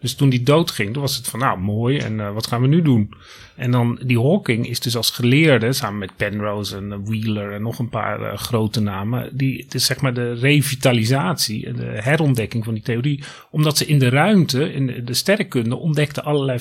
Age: 30-49